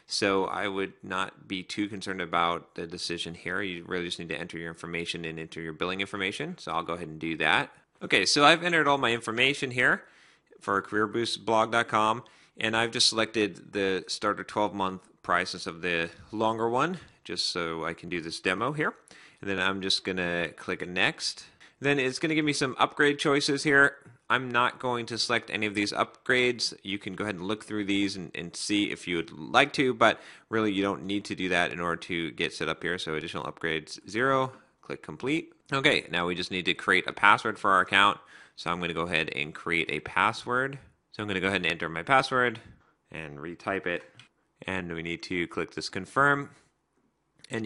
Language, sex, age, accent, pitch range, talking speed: English, male, 30-49, American, 85-115 Hz, 210 wpm